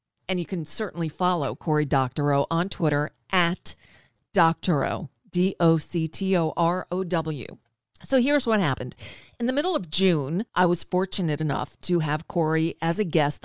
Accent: American